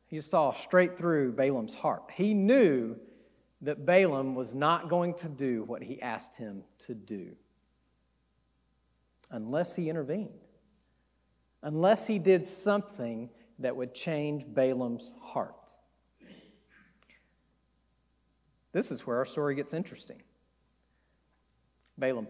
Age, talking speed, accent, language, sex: 40-59, 110 wpm, American, English, male